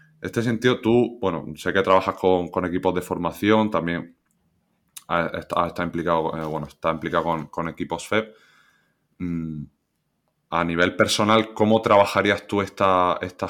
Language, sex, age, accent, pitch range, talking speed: Spanish, male, 20-39, Spanish, 85-100 Hz, 135 wpm